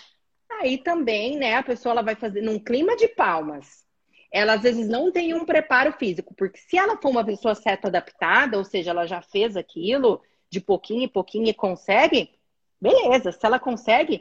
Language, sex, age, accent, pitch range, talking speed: Portuguese, female, 30-49, Brazilian, 195-270 Hz, 185 wpm